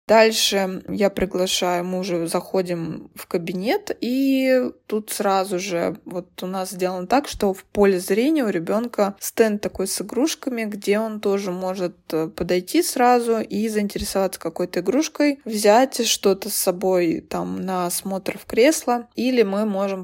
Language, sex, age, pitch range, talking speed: Russian, female, 20-39, 185-220 Hz, 145 wpm